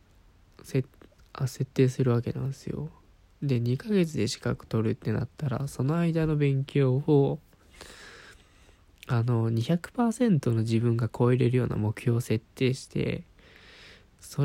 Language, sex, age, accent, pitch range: Japanese, male, 20-39, native, 110-145 Hz